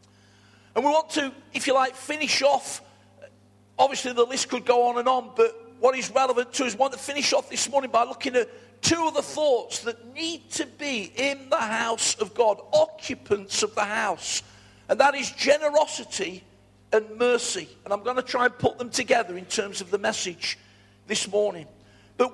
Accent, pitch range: British, 225-280 Hz